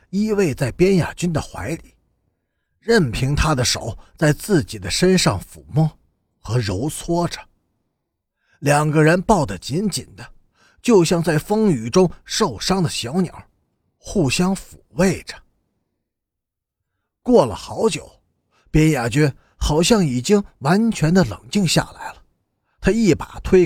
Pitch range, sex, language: 110-185 Hz, male, Chinese